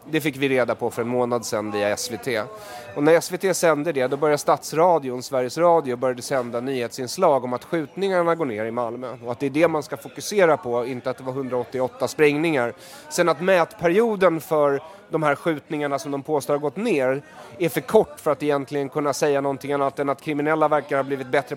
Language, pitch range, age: Swedish, 135-165 Hz, 30-49